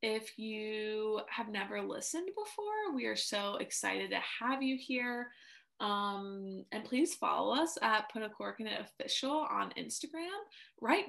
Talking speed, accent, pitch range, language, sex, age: 155 wpm, American, 215-285 Hz, English, female, 20-39